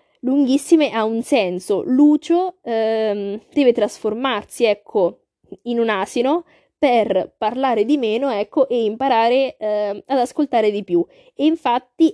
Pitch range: 205-270 Hz